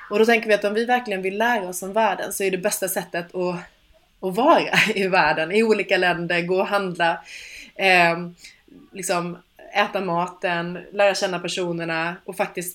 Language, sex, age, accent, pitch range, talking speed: English, female, 20-39, Swedish, 175-210 Hz, 170 wpm